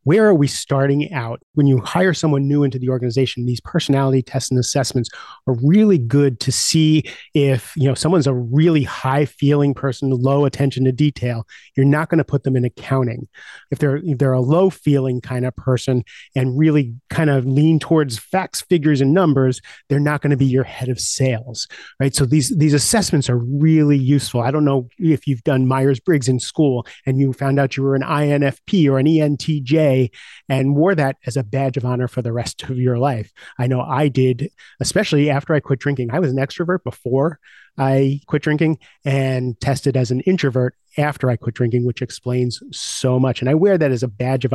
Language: English